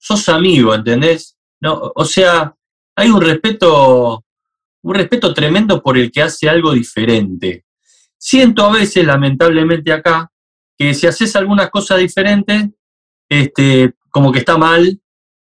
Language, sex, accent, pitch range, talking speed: Spanish, male, Argentinian, 125-185 Hz, 130 wpm